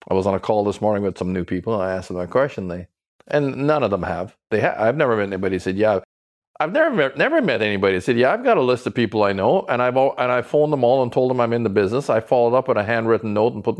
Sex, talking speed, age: male, 315 wpm, 50-69